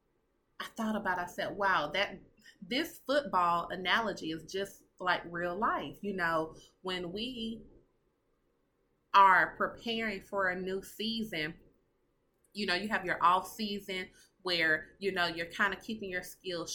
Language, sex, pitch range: English, female, 170-195 Hz